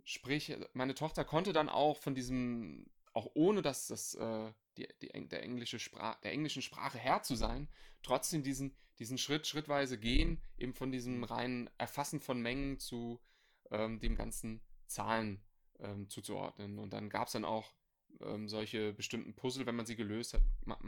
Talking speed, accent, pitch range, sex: 170 wpm, German, 105-130 Hz, male